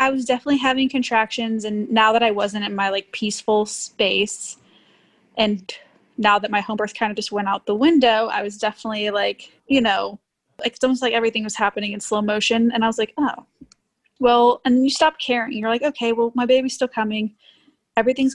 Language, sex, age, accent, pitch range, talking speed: English, female, 10-29, American, 210-250 Hz, 205 wpm